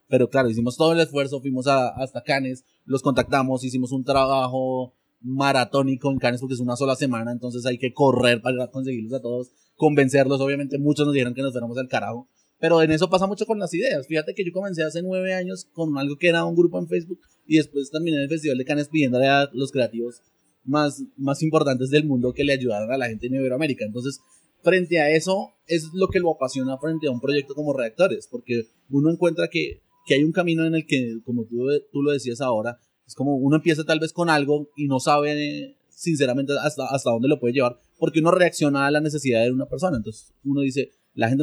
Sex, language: male, Spanish